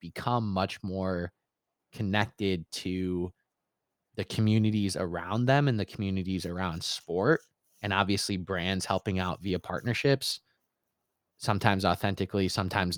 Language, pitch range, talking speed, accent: English, 95-120 Hz, 110 wpm, American